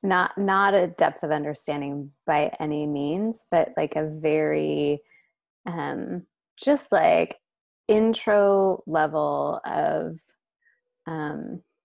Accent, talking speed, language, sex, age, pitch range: American, 100 wpm, English, female, 20-39, 150-190 Hz